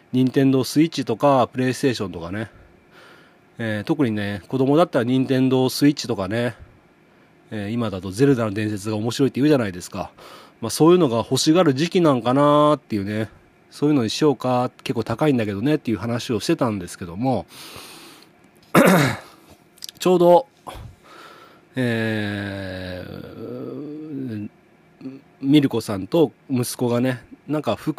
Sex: male